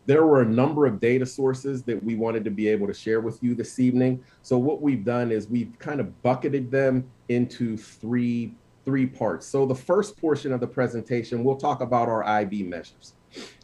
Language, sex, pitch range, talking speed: English, male, 105-125 Hz, 205 wpm